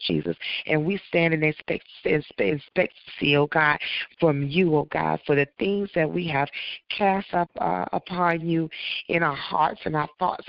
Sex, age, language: female, 30-49, English